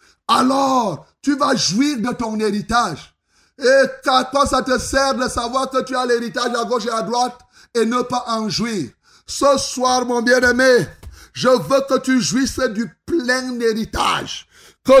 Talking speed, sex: 170 wpm, male